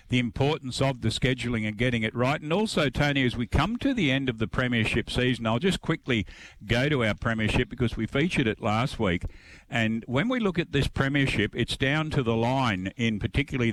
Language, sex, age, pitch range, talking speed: English, male, 50-69, 105-135 Hz, 215 wpm